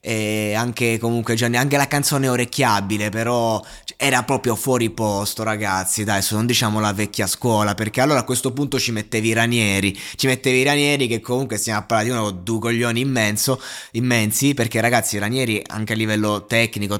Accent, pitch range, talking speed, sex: native, 105-130 Hz, 180 wpm, male